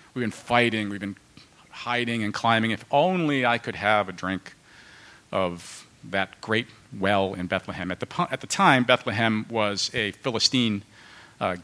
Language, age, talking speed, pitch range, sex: English, 50-69, 160 wpm, 110-140 Hz, male